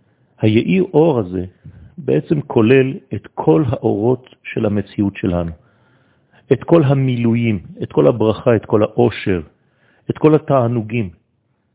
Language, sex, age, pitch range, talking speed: French, male, 50-69, 105-130 Hz, 115 wpm